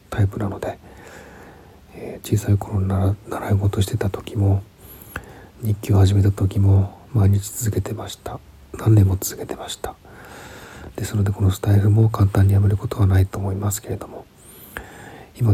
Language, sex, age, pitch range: Japanese, male, 40-59, 95-110 Hz